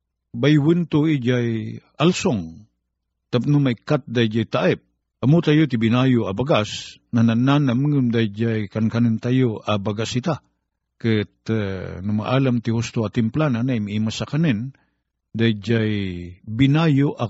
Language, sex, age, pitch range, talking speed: Filipino, male, 50-69, 110-145 Hz, 130 wpm